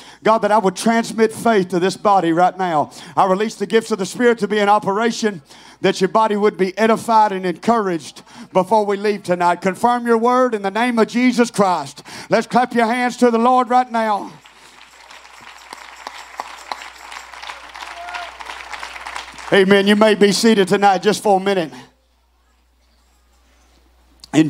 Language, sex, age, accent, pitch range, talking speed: English, male, 40-59, American, 205-280 Hz, 155 wpm